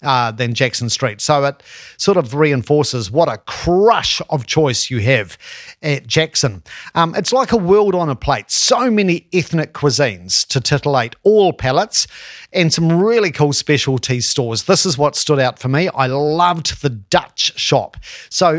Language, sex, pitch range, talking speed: English, male, 130-170 Hz, 170 wpm